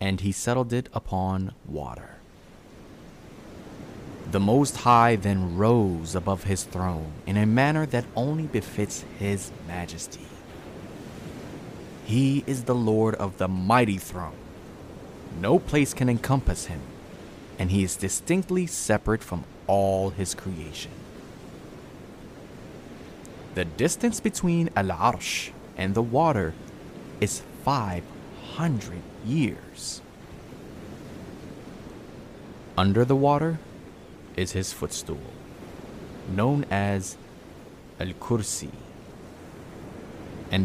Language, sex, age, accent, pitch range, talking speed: English, male, 30-49, American, 95-130 Hz, 95 wpm